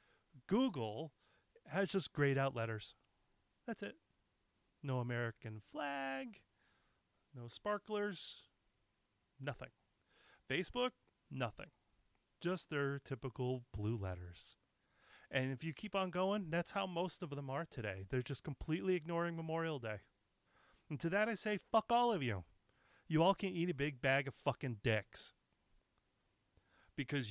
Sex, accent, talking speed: male, American, 130 wpm